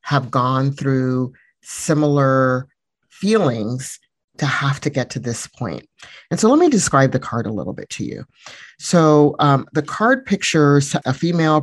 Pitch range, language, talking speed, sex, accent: 130-145 Hz, English, 160 wpm, male, American